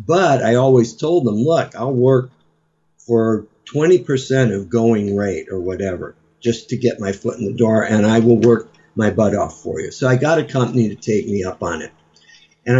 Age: 50-69